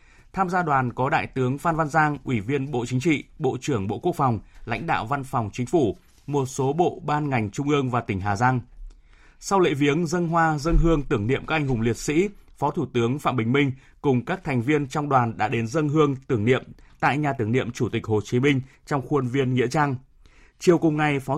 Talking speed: 240 wpm